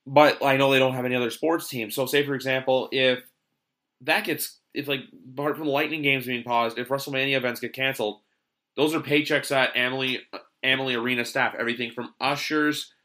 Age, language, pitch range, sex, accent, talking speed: 30-49, English, 120-145 Hz, male, American, 195 wpm